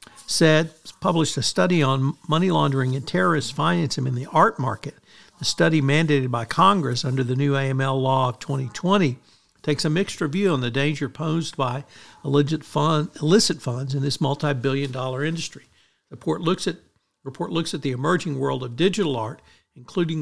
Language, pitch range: English, 135-165 Hz